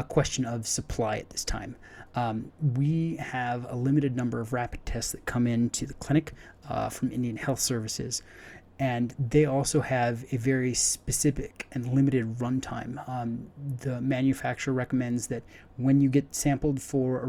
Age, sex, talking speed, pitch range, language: 30-49, male, 165 wpm, 115-135 Hz, English